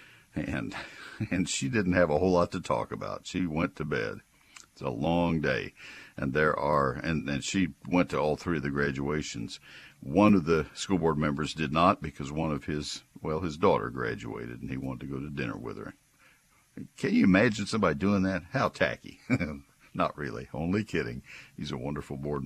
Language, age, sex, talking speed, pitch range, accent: English, 60-79, male, 195 wpm, 80-105 Hz, American